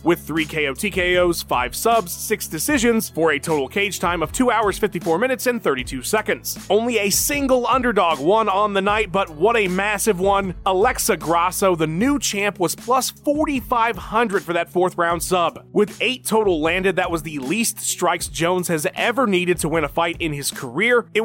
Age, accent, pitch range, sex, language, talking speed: 30-49, American, 165-215 Hz, male, English, 190 wpm